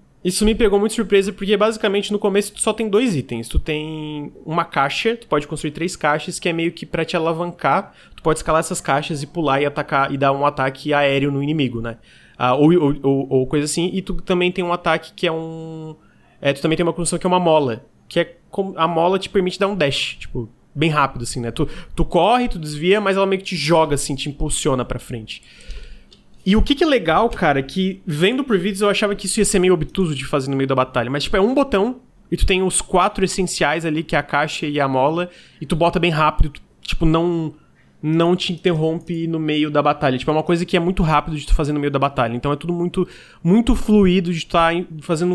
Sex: male